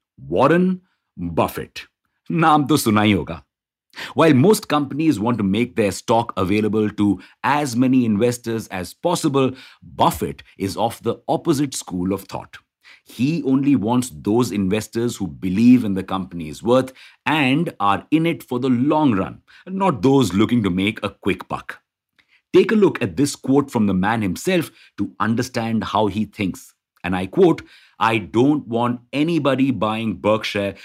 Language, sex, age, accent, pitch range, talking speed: English, male, 50-69, Indian, 100-135 Hz, 150 wpm